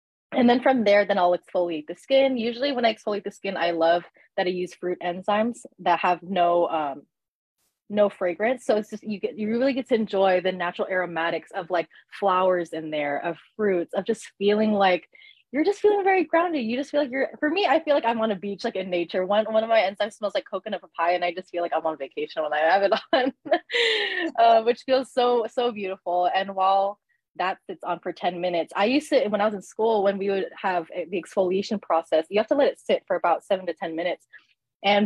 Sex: female